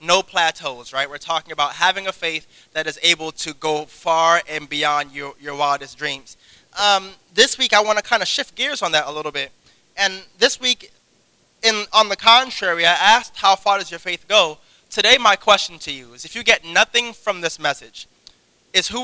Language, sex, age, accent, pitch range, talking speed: English, male, 20-39, American, 170-225 Hz, 210 wpm